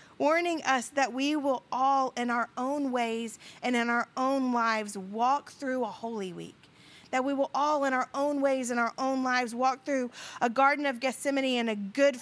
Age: 40-59